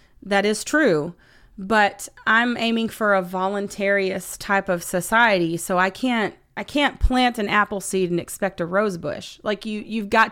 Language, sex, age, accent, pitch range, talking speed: English, female, 30-49, American, 185-225 Hz, 175 wpm